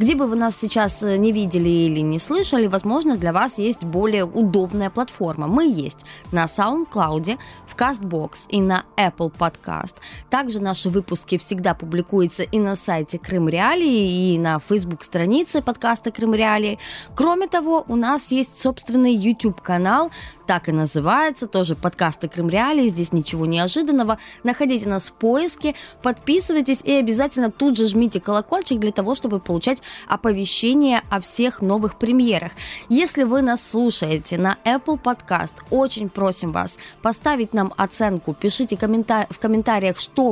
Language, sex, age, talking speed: Russian, female, 20-39, 145 wpm